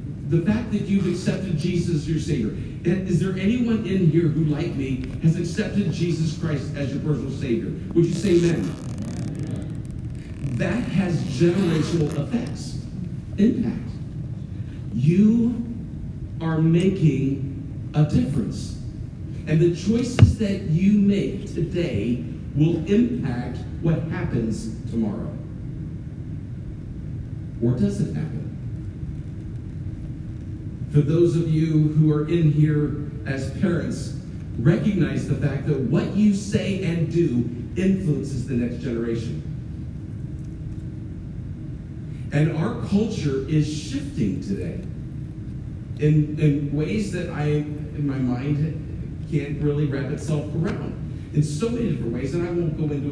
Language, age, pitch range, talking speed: English, 50-69, 135-170 Hz, 120 wpm